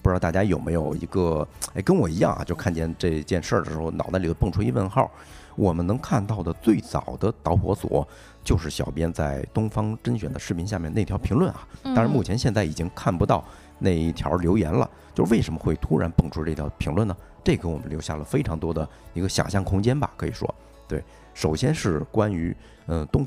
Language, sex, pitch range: Chinese, male, 80-110 Hz